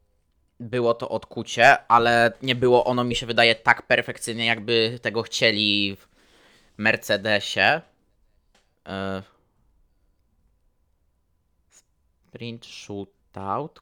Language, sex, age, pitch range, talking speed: Polish, male, 20-39, 110-120 Hz, 85 wpm